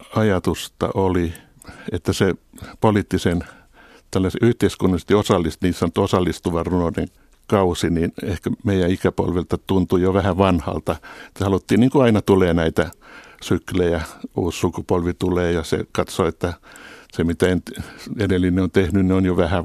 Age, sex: 60-79, male